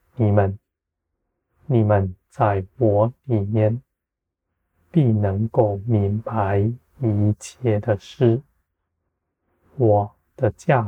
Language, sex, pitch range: Chinese, male, 90-115 Hz